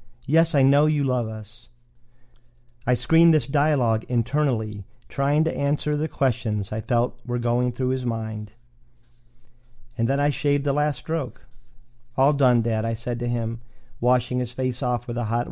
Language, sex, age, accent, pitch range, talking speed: English, male, 50-69, American, 115-140 Hz, 170 wpm